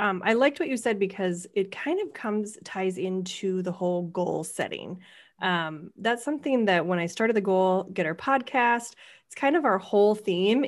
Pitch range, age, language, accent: 180-225 Hz, 20-39, English, American